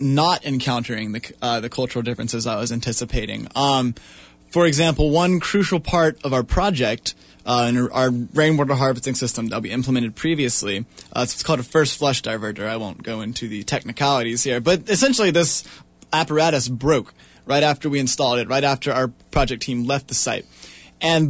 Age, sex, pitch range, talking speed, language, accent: 20-39, male, 120-155 Hz, 175 wpm, English, American